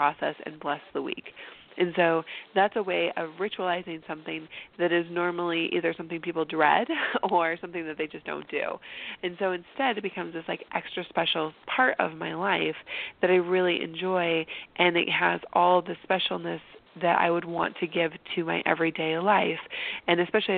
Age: 20-39